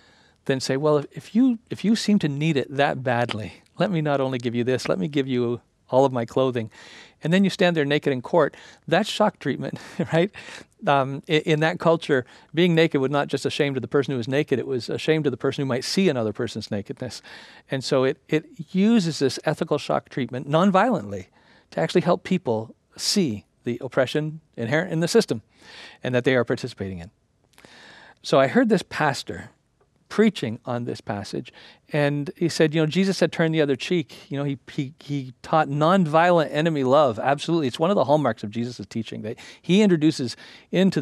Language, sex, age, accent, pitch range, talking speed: English, male, 50-69, American, 125-160 Hz, 205 wpm